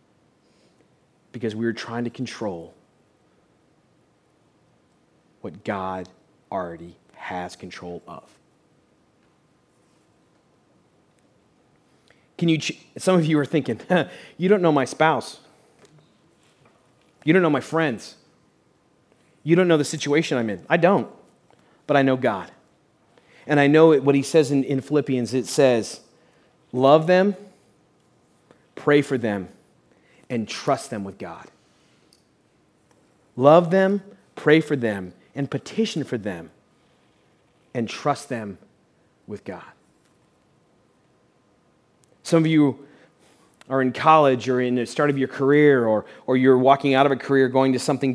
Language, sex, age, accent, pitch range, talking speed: English, male, 30-49, American, 125-160 Hz, 130 wpm